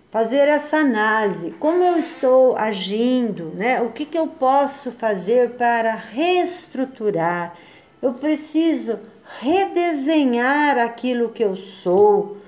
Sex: female